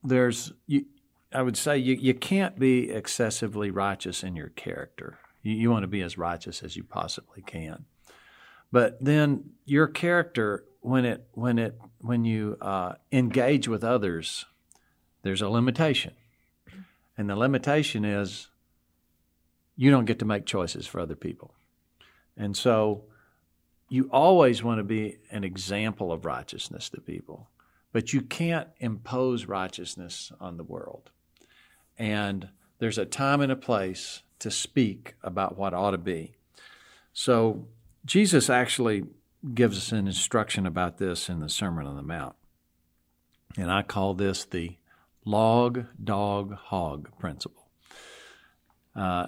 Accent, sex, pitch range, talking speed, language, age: American, male, 95-125 Hz, 140 wpm, English, 50-69